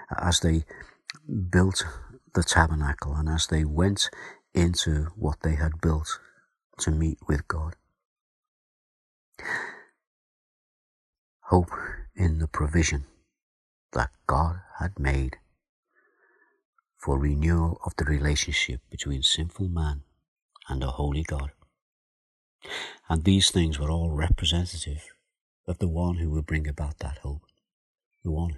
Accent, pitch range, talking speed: British, 75-90 Hz, 115 wpm